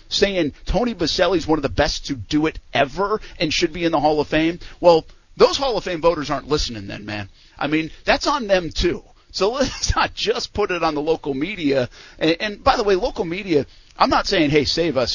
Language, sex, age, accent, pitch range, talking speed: English, male, 50-69, American, 140-195 Hz, 250 wpm